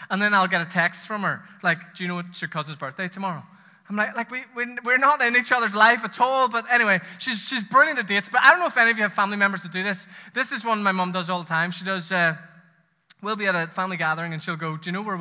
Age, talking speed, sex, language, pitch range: 20-39, 300 wpm, male, English, 165-225 Hz